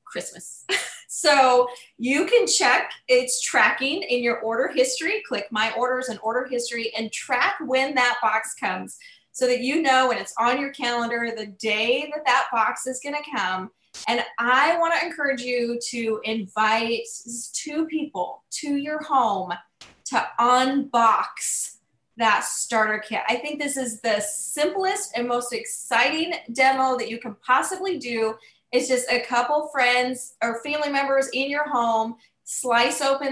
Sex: female